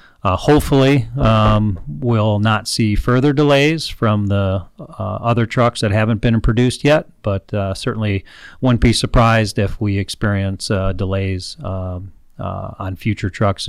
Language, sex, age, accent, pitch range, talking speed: English, male, 40-59, American, 100-125 Hz, 150 wpm